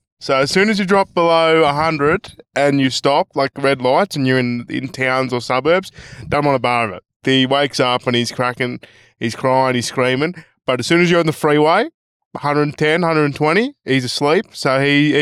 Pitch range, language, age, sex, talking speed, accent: 130-170 Hz, English, 20-39, male, 195 wpm, Australian